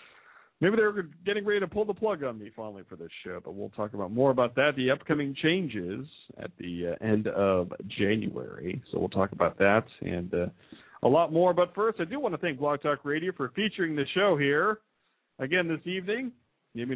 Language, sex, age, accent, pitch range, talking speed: English, male, 50-69, American, 115-180 Hz, 210 wpm